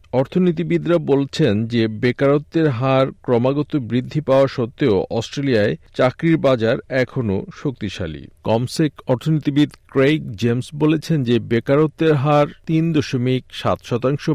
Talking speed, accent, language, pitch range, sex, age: 105 wpm, native, Bengali, 120-155 Hz, male, 50-69